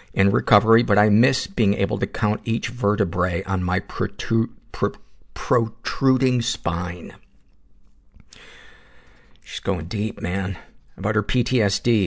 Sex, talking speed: male, 110 wpm